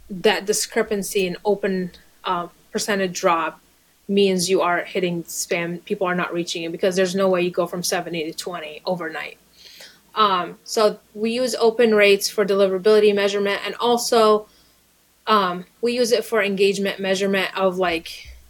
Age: 20-39